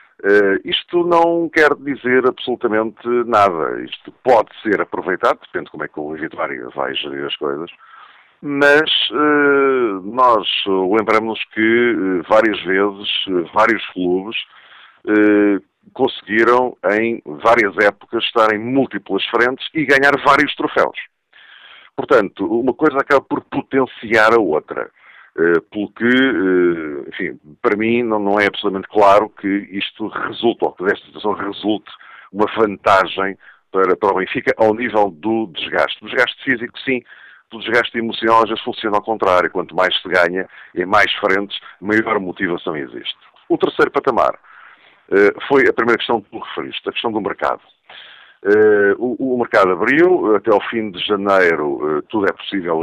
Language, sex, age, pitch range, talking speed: Portuguese, male, 50-69, 100-140 Hz, 150 wpm